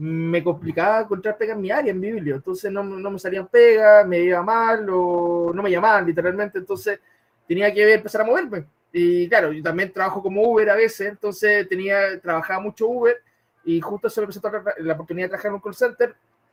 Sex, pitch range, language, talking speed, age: male, 160-205 Hz, Spanish, 220 wpm, 20-39